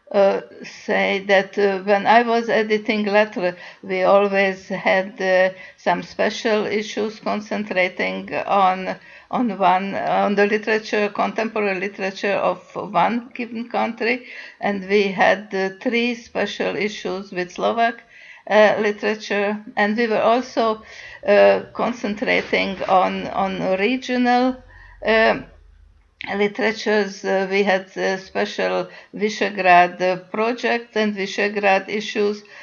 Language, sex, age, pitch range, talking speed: Slovak, female, 60-79, 190-215 Hz, 115 wpm